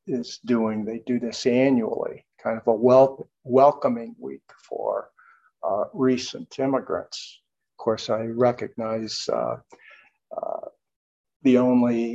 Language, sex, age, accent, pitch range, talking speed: English, male, 50-69, American, 115-130 Hz, 115 wpm